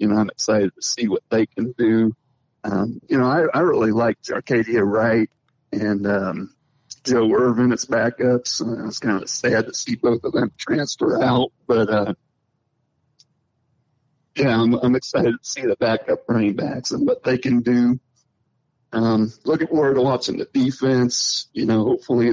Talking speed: 170 wpm